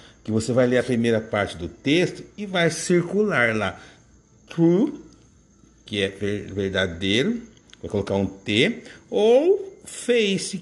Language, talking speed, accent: Portuguese, 130 wpm, Brazilian